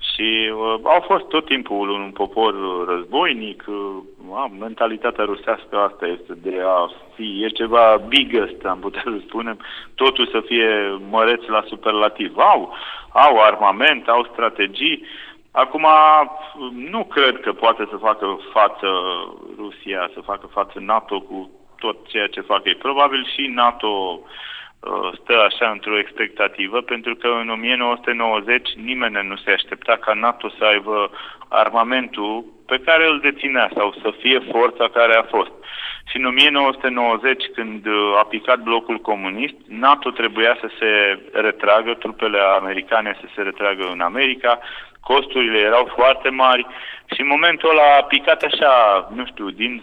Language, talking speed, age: Romanian, 145 wpm, 30-49